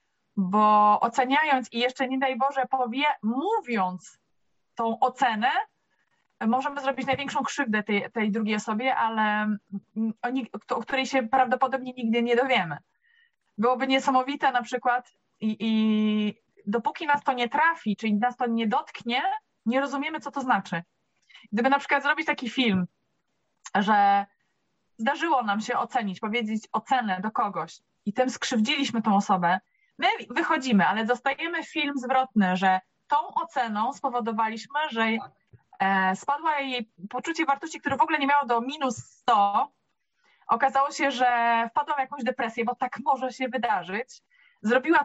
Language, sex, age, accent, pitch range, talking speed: Polish, female, 20-39, native, 220-280 Hz, 140 wpm